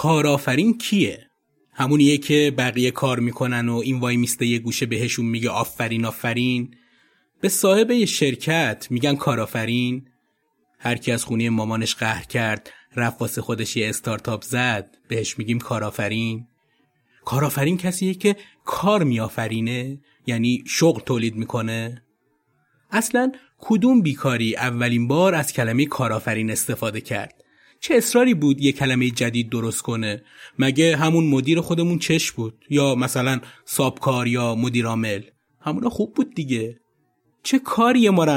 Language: Persian